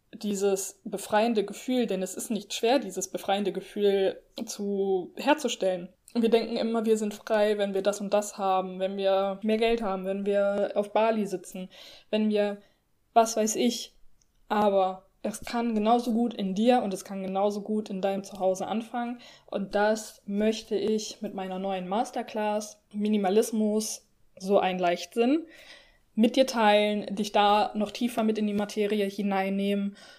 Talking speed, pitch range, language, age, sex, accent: 155 wpm, 195-225 Hz, German, 20-39, female, German